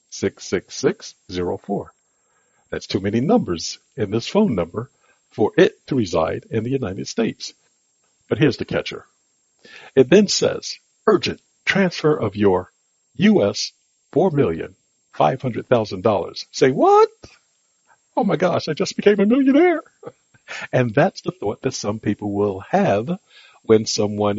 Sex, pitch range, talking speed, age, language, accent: male, 105-175 Hz, 150 wpm, 60-79, English, American